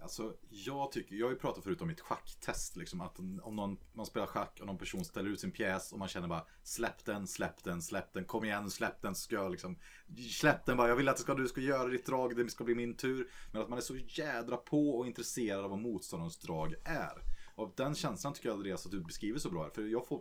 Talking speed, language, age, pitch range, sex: 265 wpm, Swedish, 30-49, 95-130 Hz, male